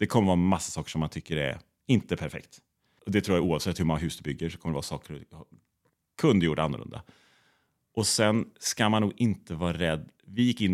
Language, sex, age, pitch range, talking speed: Swedish, male, 30-49, 80-100 Hz, 220 wpm